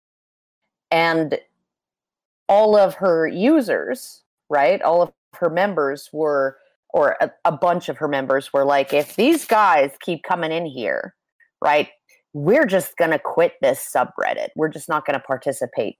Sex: female